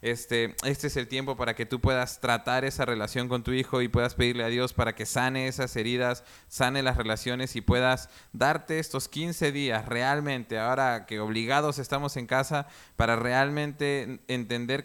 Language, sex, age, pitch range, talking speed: Spanish, male, 20-39, 115-135 Hz, 180 wpm